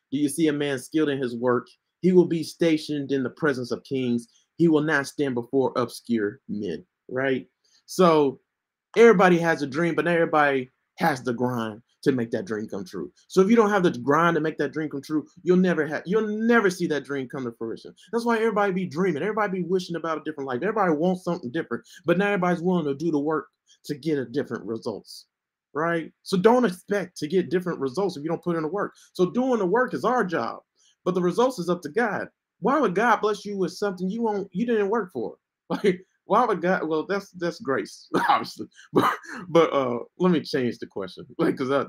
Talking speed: 225 wpm